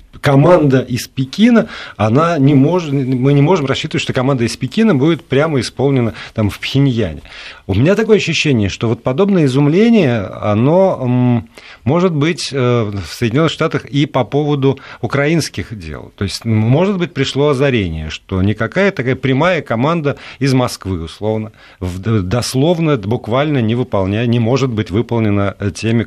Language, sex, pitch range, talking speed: Russian, male, 105-140 Hz, 145 wpm